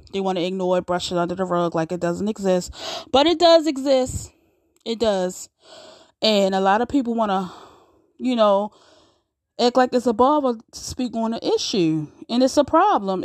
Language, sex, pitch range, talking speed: English, female, 180-270 Hz, 195 wpm